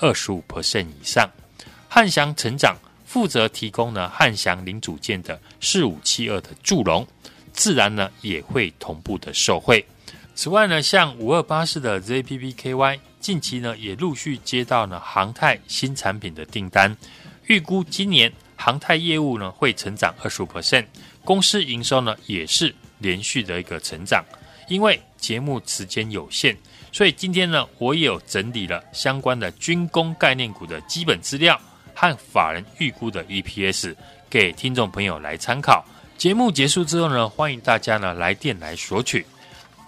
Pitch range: 100-160 Hz